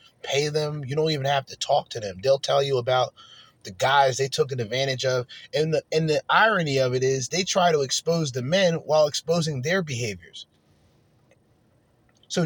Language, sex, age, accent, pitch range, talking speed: English, male, 30-49, American, 120-155 Hz, 190 wpm